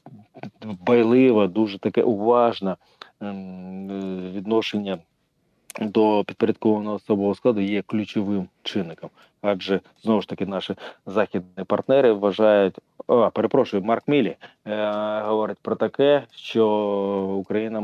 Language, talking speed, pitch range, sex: Ukrainian, 100 wpm, 100-115 Hz, male